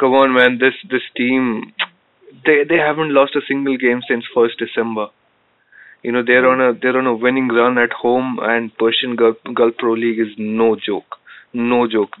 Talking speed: 190 wpm